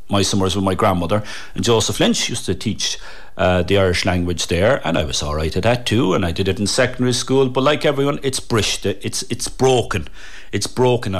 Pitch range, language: 95-125 Hz, English